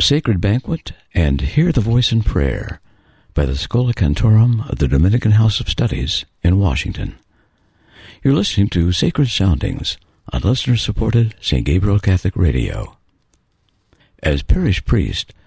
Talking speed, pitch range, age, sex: 130 wpm, 85-115 Hz, 60-79, male